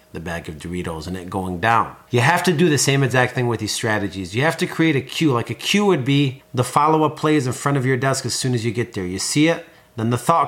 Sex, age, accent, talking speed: male, 30-49, American, 285 wpm